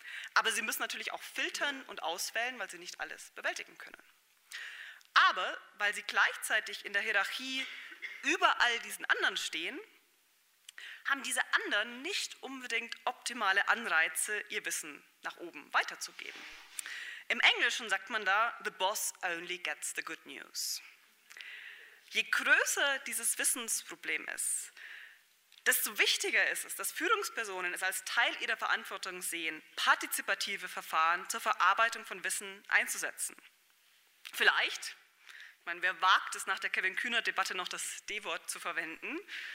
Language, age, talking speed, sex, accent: German, 20-39, 135 wpm, female, German